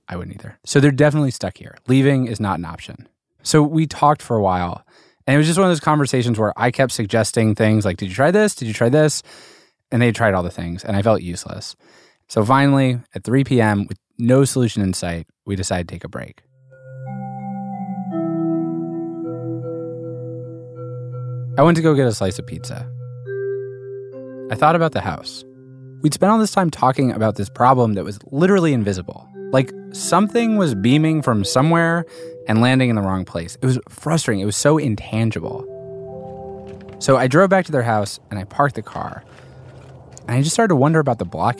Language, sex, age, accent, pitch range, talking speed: English, male, 20-39, American, 105-145 Hz, 195 wpm